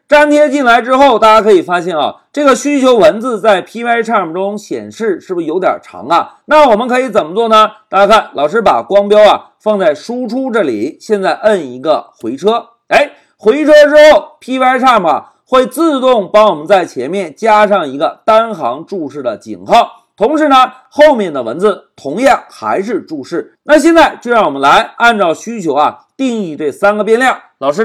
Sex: male